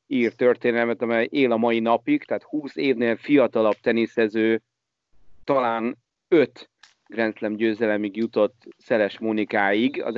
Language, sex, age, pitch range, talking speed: Hungarian, male, 30-49, 105-120 Hz, 120 wpm